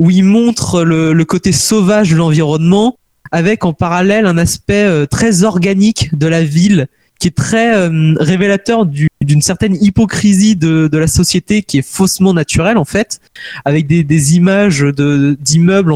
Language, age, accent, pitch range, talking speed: French, 20-39, French, 150-205 Hz, 165 wpm